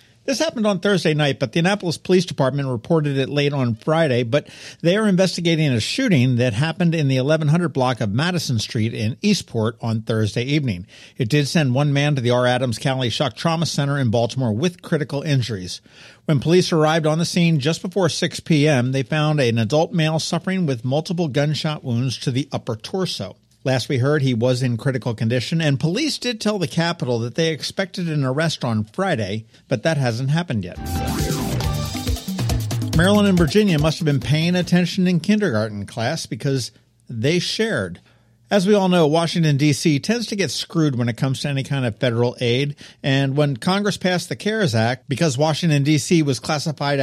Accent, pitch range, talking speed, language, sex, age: American, 120-165 Hz, 190 wpm, English, male, 50-69